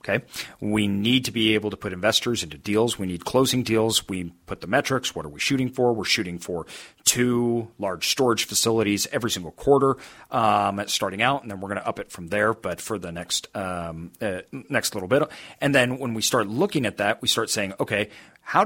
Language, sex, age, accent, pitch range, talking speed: English, male, 40-59, American, 105-150 Hz, 220 wpm